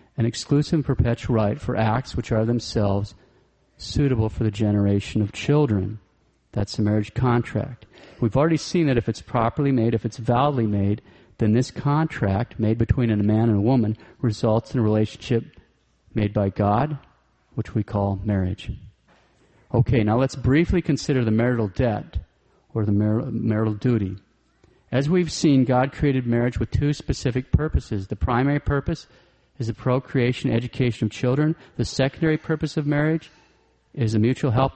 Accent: American